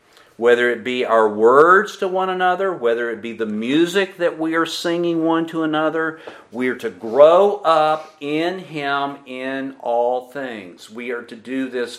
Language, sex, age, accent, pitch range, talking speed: English, male, 50-69, American, 115-160 Hz, 175 wpm